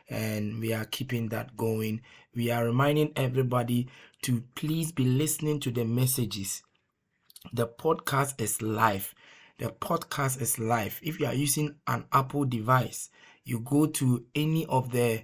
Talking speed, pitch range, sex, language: 150 wpm, 120-145 Hz, male, English